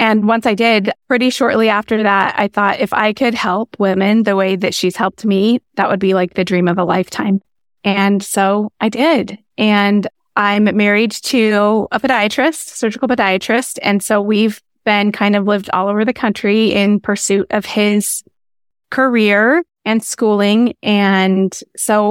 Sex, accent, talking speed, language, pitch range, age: female, American, 170 wpm, English, 195-225 Hz, 20-39